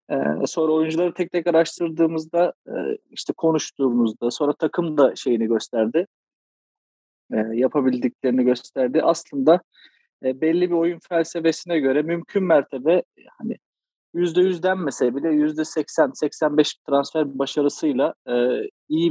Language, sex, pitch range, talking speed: Turkish, male, 135-170 Hz, 110 wpm